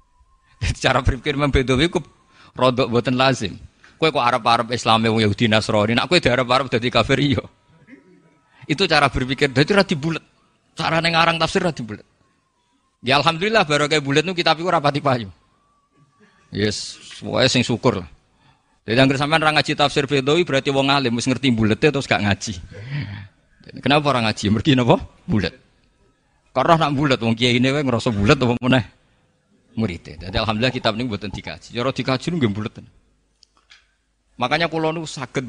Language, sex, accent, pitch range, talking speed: Indonesian, male, native, 105-145 Hz, 155 wpm